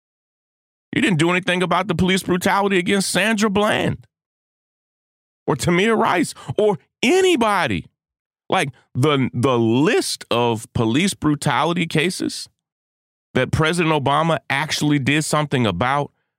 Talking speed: 115 wpm